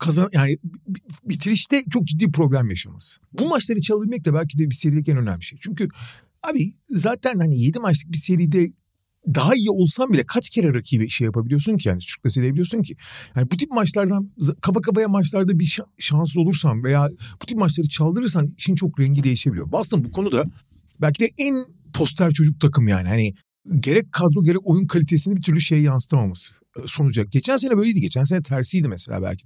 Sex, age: male, 40-59